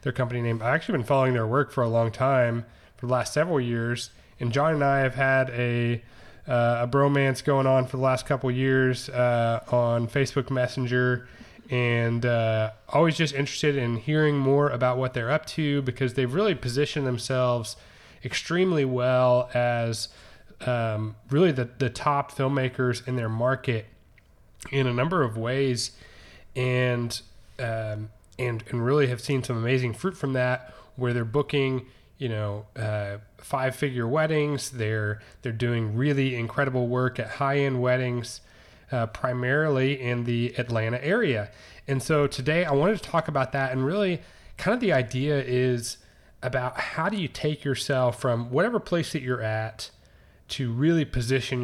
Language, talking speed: English, 165 wpm